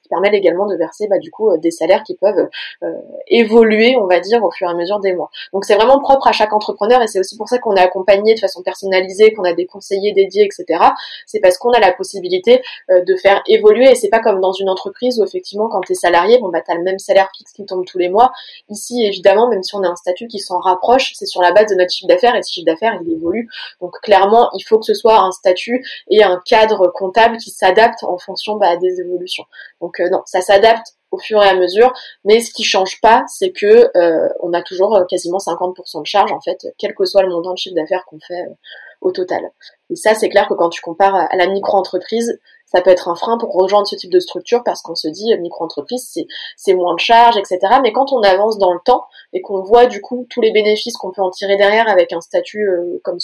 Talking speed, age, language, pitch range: 260 wpm, 20-39, French, 180-235 Hz